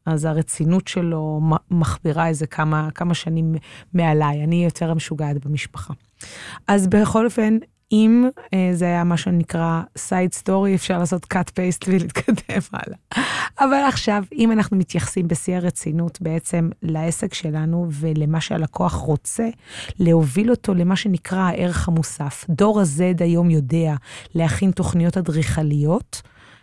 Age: 20-39